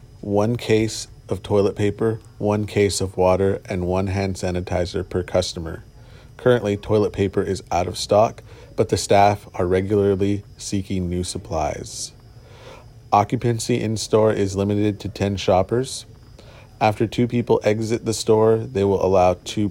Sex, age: male, 30-49